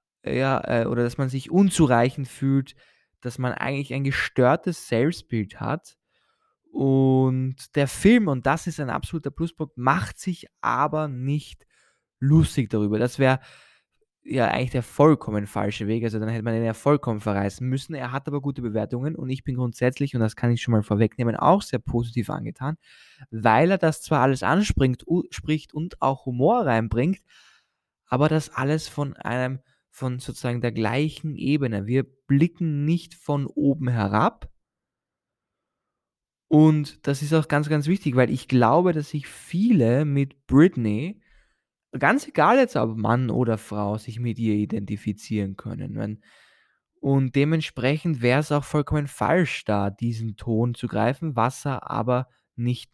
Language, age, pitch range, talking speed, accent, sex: German, 20-39, 120-150 Hz, 155 wpm, German, male